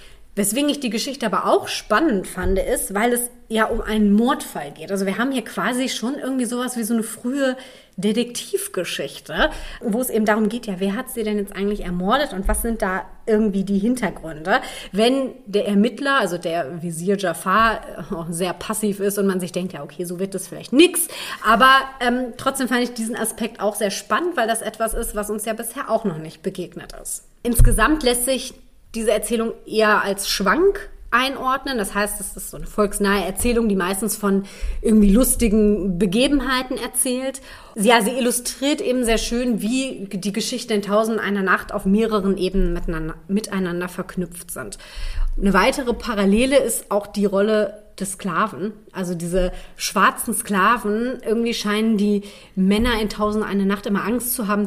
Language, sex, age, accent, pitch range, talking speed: German, female, 30-49, German, 195-240 Hz, 180 wpm